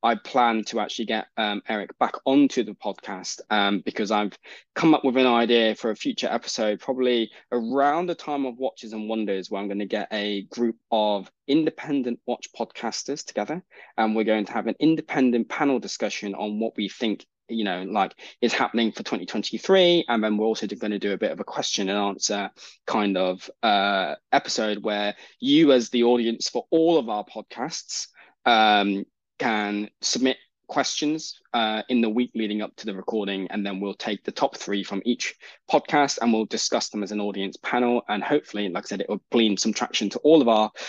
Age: 20-39